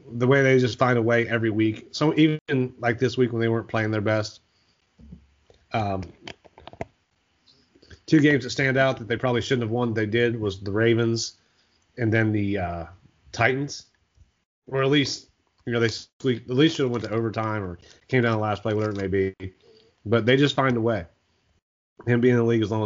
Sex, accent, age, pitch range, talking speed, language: male, American, 30-49, 100-125 Hz, 205 wpm, English